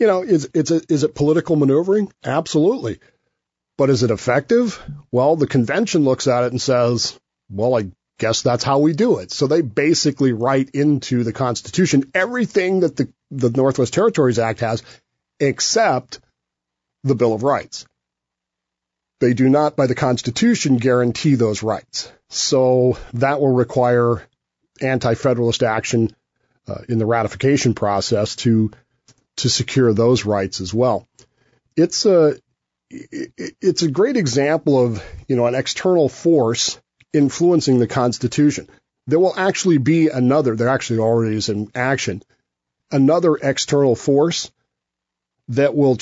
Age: 40-59